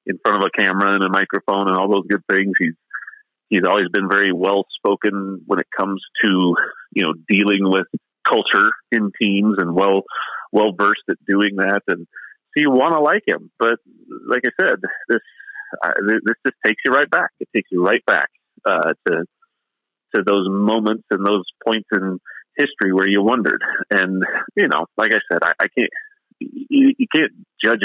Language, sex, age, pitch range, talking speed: English, male, 30-49, 95-115 Hz, 185 wpm